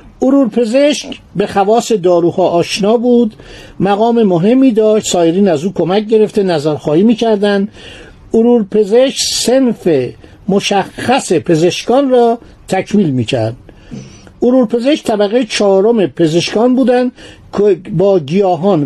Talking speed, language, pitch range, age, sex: 105 wpm, Persian, 175-230 Hz, 50-69, male